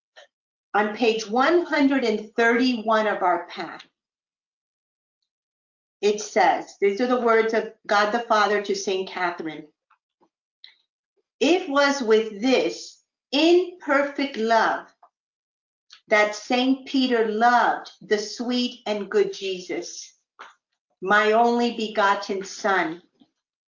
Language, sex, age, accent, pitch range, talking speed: English, female, 50-69, American, 215-285 Hz, 95 wpm